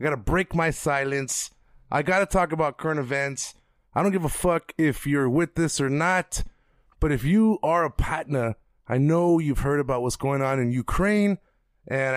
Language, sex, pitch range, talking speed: English, male, 140-170 Hz, 200 wpm